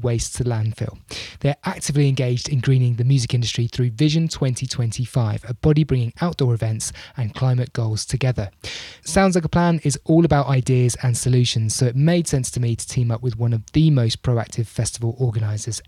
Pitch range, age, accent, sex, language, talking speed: 115-145 Hz, 20-39, British, male, English, 190 wpm